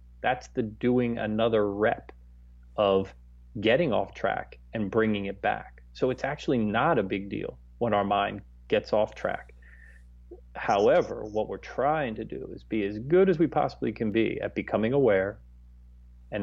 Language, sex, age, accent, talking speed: English, male, 30-49, American, 165 wpm